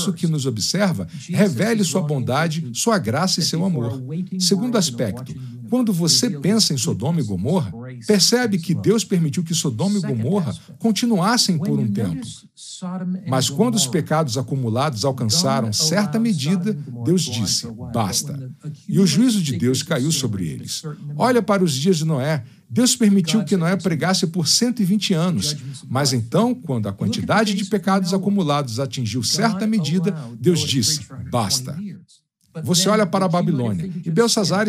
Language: Portuguese